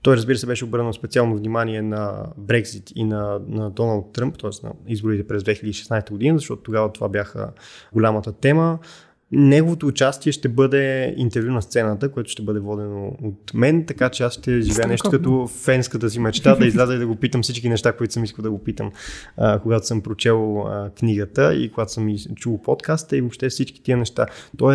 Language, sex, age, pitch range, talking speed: Bulgarian, male, 20-39, 110-130 Hz, 190 wpm